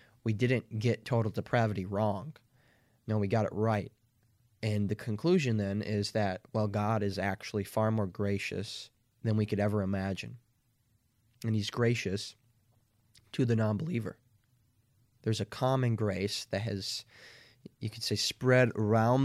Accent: American